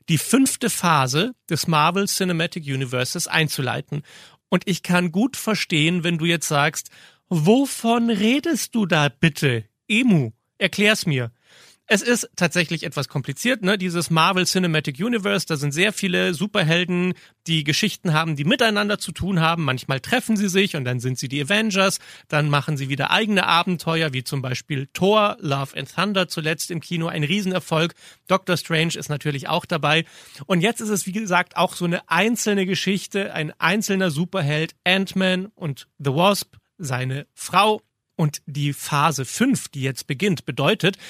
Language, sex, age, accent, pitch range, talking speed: German, male, 40-59, German, 150-195 Hz, 160 wpm